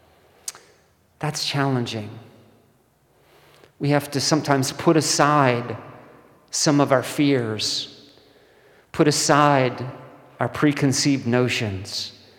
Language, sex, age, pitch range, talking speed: English, male, 40-59, 115-145 Hz, 80 wpm